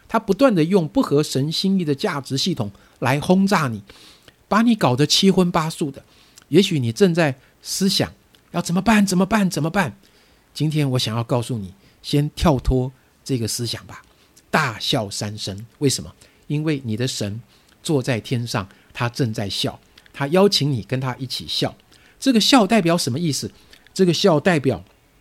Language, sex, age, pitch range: Chinese, male, 50-69, 130-195 Hz